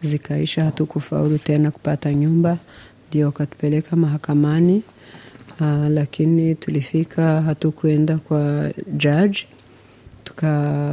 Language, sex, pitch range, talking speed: Swahili, female, 150-165 Hz, 90 wpm